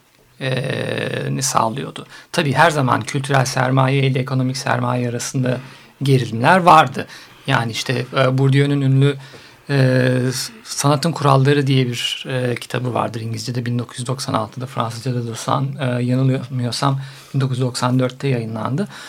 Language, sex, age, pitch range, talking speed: Turkish, male, 50-69, 130-160 Hz, 110 wpm